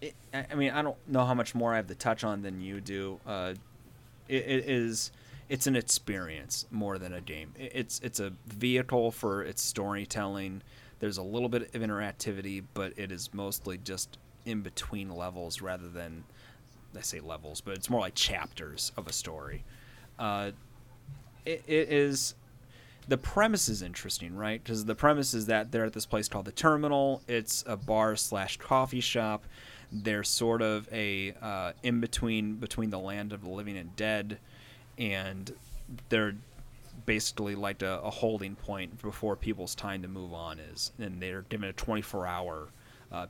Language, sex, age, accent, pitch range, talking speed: English, male, 30-49, American, 100-125 Hz, 175 wpm